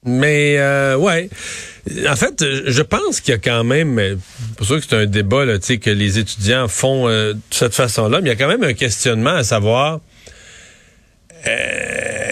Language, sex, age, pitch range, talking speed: French, male, 40-59, 120-165 Hz, 185 wpm